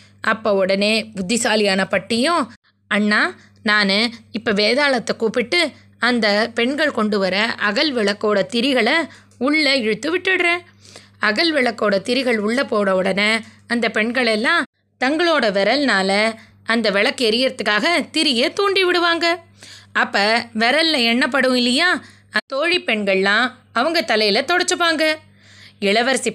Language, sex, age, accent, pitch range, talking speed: Tamil, female, 20-39, native, 210-295 Hz, 105 wpm